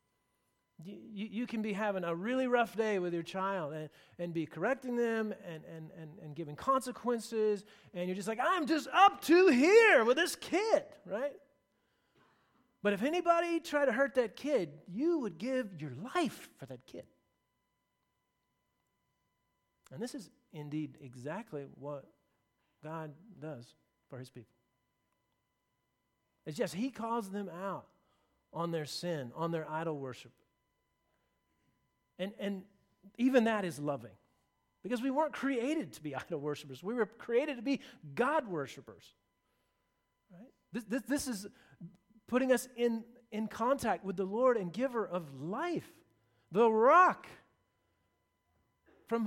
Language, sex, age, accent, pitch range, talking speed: English, male, 40-59, American, 160-250 Hz, 145 wpm